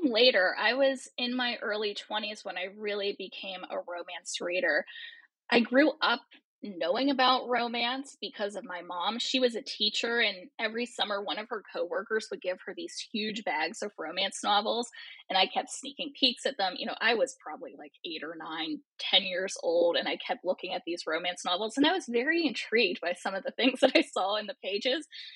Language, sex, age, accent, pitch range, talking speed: English, female, 10-29, American, 195-275 Hz, 205 wpm